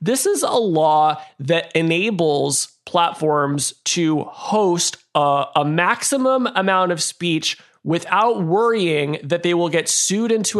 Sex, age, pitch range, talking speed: male, 20-39, 145-190 Hz, 130 wpm